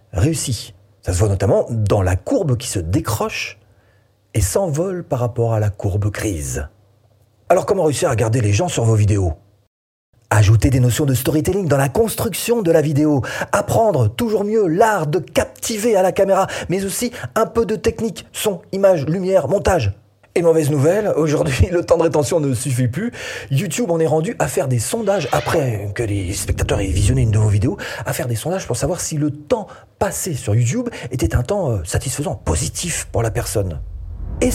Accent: French